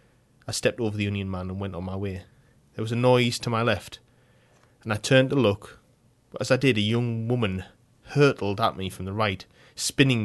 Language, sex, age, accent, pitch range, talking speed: English, male, 20-39, British, 100-125 Hz, 215 wpm